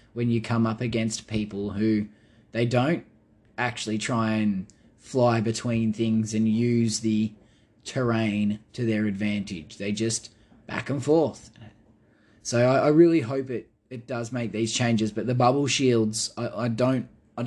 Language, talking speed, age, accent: English, 160 wpm, 20-39, Australian